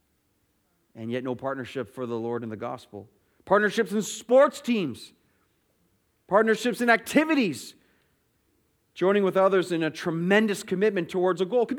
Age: 30-49